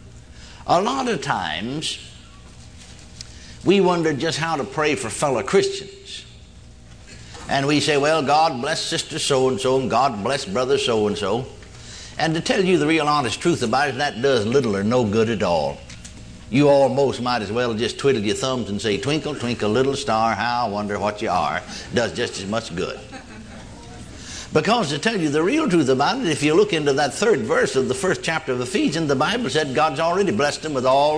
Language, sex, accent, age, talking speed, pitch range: English, male, American, 60-79, 195 wpm, 115-165 Hz